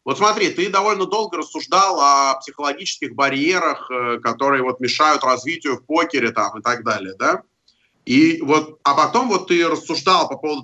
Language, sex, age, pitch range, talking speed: Russian, male, 30-49, 130-170 Hz, 165 wpm